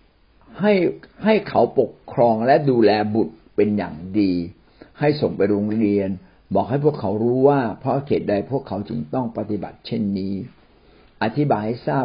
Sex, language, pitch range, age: male, Thai, 105-145 Hz, 60-79